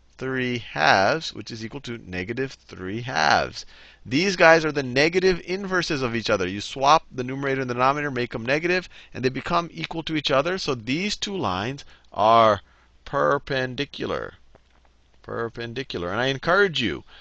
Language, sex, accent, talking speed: English, male, American, 160 wpm